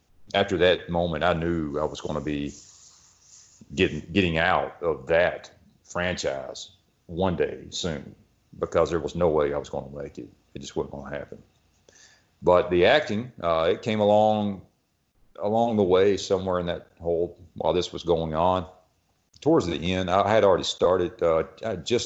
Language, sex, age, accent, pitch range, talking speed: English, male, 40-59, American, 80-100 Hz, 175 wpm